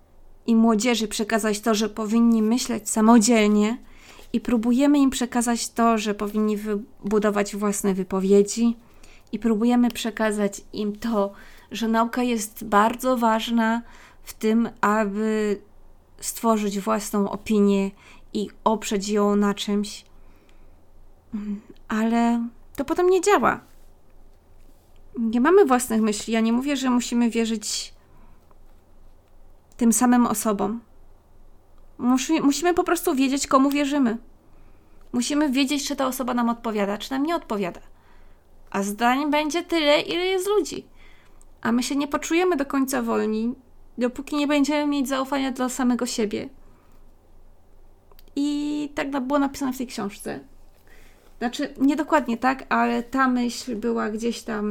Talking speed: 125 wpm